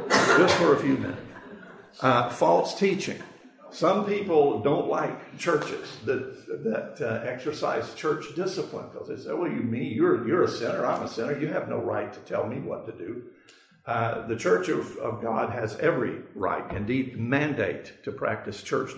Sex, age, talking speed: male, 50-69, 180 wpm